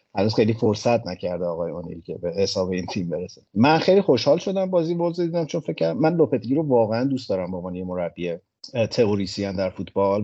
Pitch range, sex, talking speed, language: 95-130 Hz, male, 200 wpm, Persian